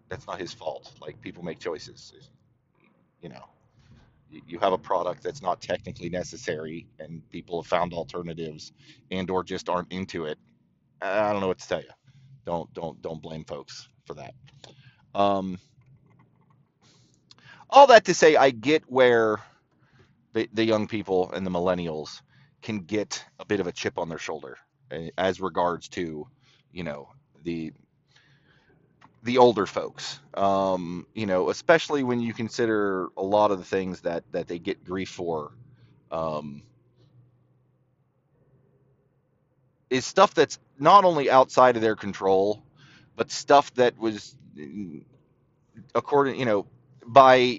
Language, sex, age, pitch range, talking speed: English, male, 30-49, 95-130 Hz, 140 wpm